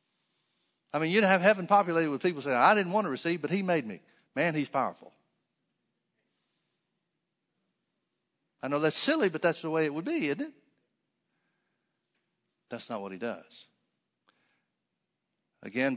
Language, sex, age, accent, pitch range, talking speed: English, male, 60-79, American, 130-170 Hz, 150 wpm